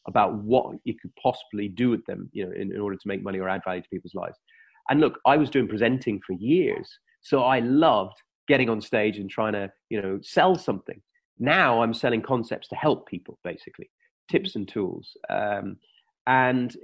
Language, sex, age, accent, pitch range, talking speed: English, male, 30-49, British, 110-175 Hz, 200 wpm